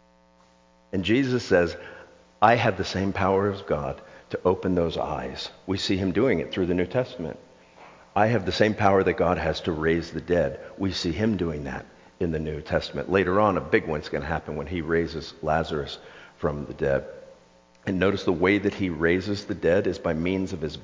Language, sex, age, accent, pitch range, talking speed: English, male, 50-69, American, 75-100 Hz, 210 wpm